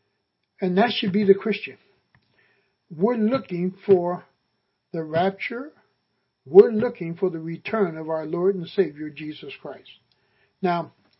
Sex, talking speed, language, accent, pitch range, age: male, 130 wpm, English, American, 175-215 Hz, 60-79